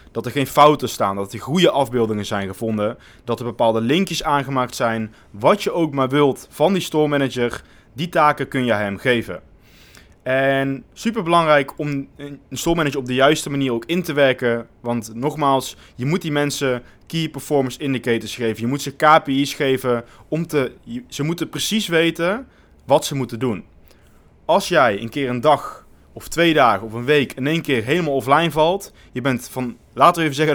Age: 20-39